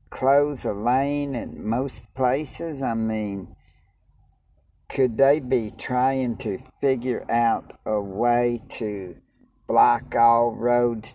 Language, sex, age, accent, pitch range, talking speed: English, male, 60-79, American, 105-135 Hz, 115 wpm